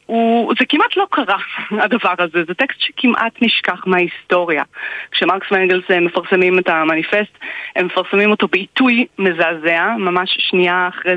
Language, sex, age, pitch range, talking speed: Hebrew, female, 30-49, 180-240 Hz, 135 wpm